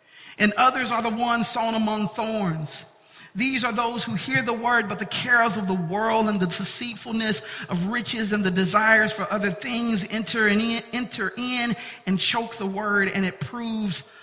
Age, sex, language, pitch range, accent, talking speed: 50-69, male, English, 180-230 Hz, American, 175 wpm